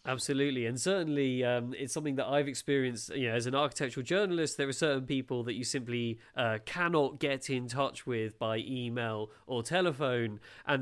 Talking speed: 185 wpm